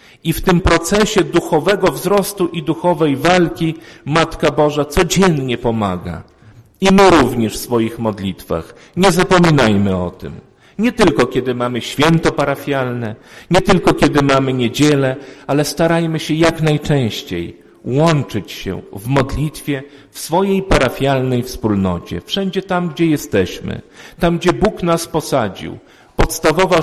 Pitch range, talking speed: 135-175 Hz, 125 wpm